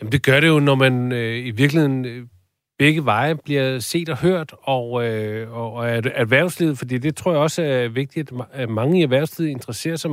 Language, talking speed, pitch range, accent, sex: Danish, 200 wpm, 120-160 Hz, native, male